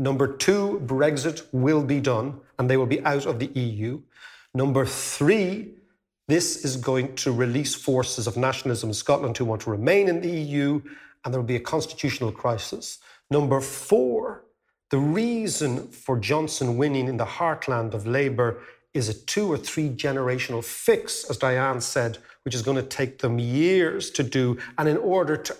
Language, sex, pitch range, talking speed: English, male, 130-155 Hz, 175 wpm